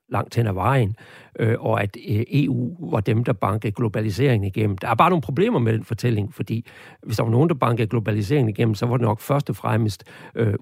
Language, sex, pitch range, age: Danish, male, 110-145 Hz, 60-79